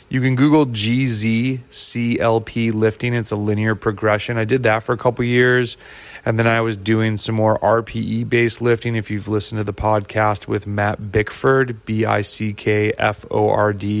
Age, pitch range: 30-49, 110-125 Hz